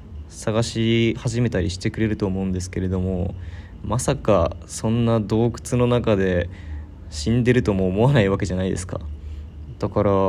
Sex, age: male, 20-39